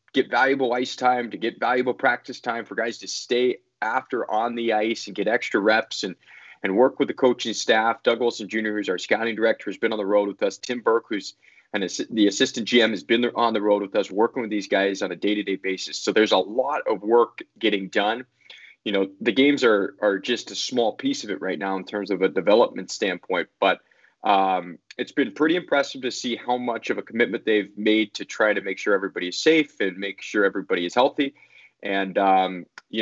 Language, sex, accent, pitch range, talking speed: English, male, American, 100-130 Hz, 225 wpm